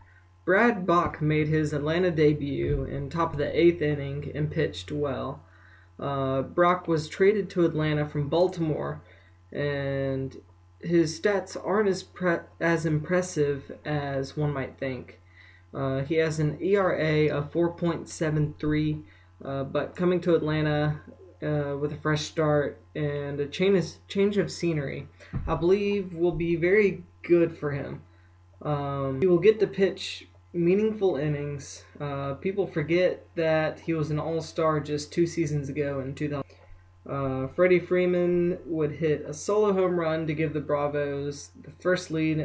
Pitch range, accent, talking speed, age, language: 140-175 Hz, American, 145 wpm, 20-39, English